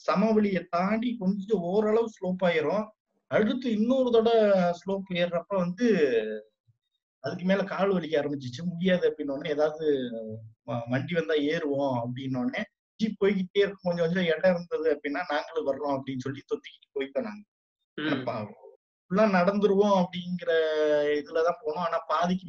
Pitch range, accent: 145-205 Hz, native